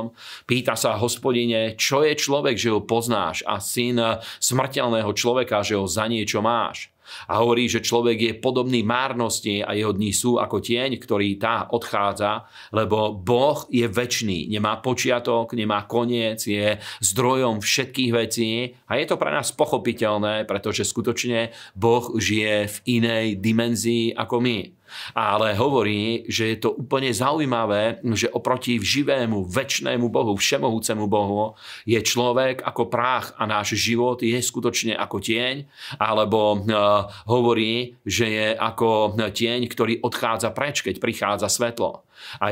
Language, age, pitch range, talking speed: Slovak, 40-59, 105-120 Hz, 140 wpm